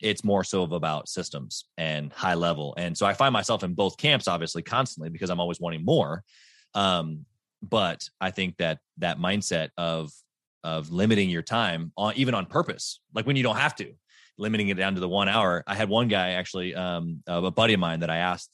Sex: male